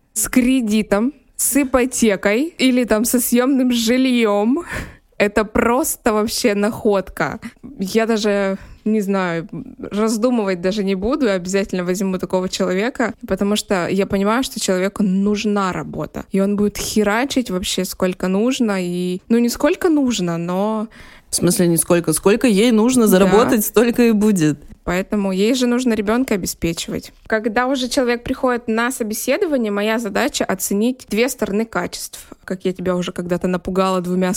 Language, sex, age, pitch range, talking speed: Russian, female, 20-39, 195-245 Hz, 145 wpm